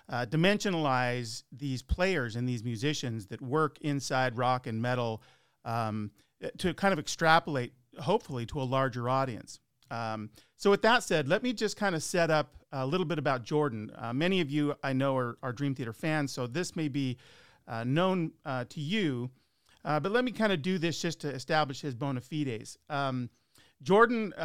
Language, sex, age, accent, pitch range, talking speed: English, male, 40-59, American, 125-155 Hz, 185 wpm